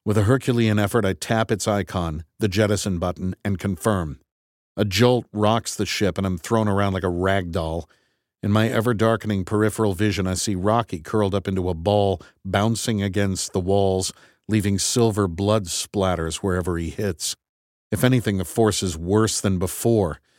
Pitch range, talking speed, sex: 95-120 Hz, 170 wpm, male